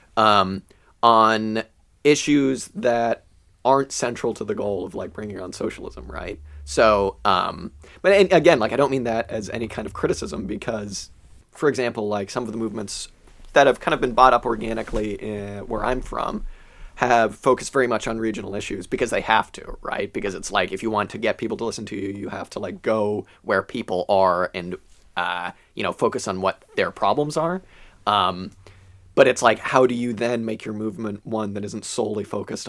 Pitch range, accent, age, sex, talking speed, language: 100-120 Hz, American, 30-49, male, 195 wpm, English